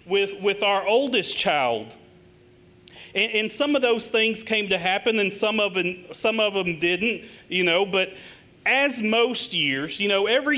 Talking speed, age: 175 wpm, 40-59